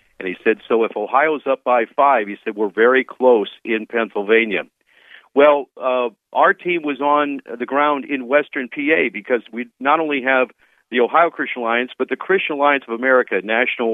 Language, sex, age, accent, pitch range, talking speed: English, male, 50-69, American, 115-140 Hz, 190 wpm